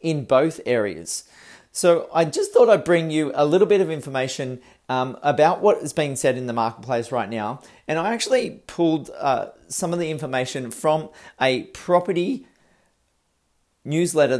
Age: 40-59